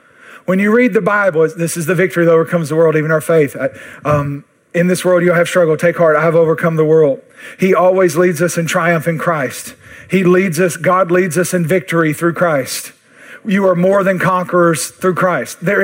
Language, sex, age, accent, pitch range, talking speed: English, male, 40-59, American, 170-235 Hz, 210 wpm